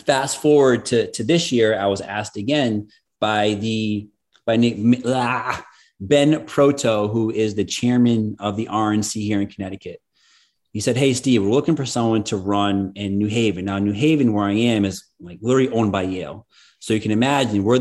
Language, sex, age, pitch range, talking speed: English, male, 30-49, 105-130 Hz, 190 wpm